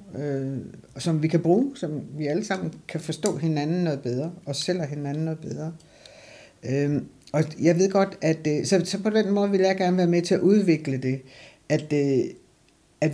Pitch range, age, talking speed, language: 140-170 Hz, 60-79, 190 wpm, Danish